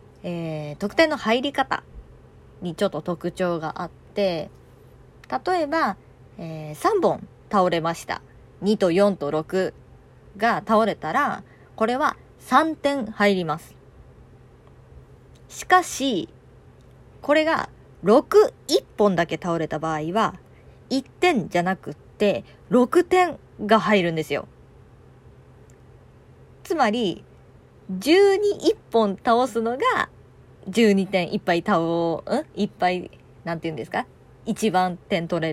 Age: 20-39